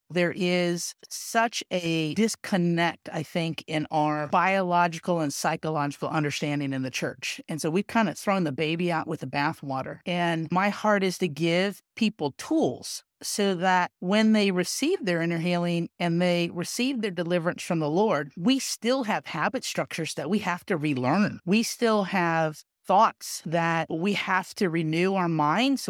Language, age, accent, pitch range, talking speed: English, 50-69, American, 160-200 Hz, 170 wpm